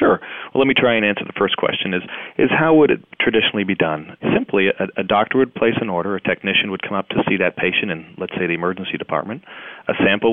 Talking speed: 250 wpm